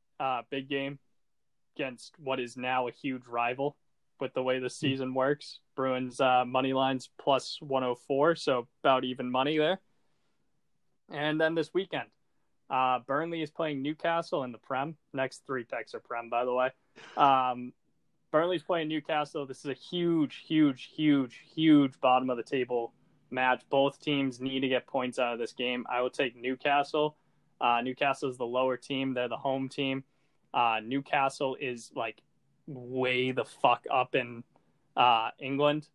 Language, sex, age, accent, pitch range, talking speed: English, male, 20-39, American, 130-150 Hz, 160 wpm